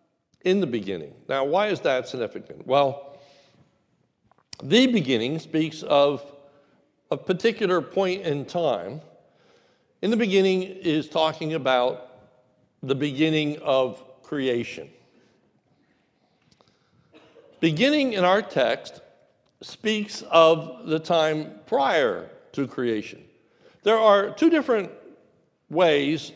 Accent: American